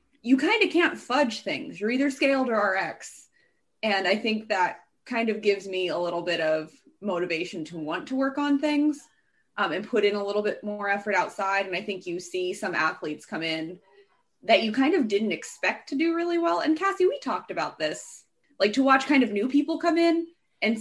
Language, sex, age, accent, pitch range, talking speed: English, female, 20-39, American, 200-295 Hz, 215 wpm